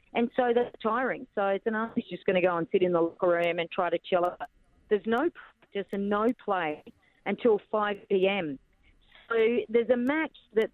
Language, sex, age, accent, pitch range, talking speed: English, female, 40-59, Australian, 185-225 Hz, 200 wpm